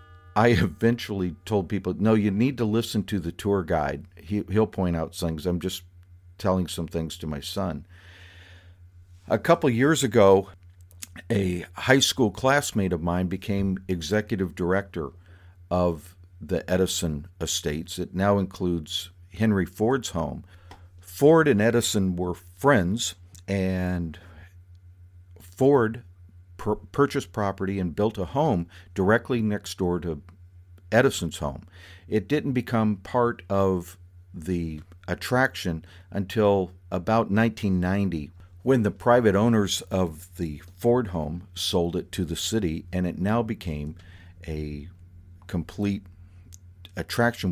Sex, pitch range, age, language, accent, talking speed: male, 90-105 Hz, 50-69, English, American, 120 wpm